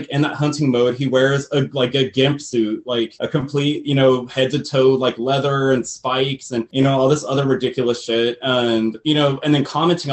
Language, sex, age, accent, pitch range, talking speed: English, male, 20-39, American, 120-140 Hz, 220 wpm